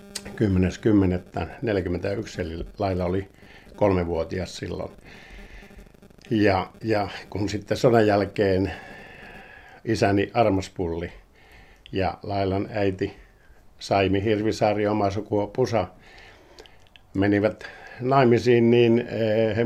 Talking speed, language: 75 wpm, Finnish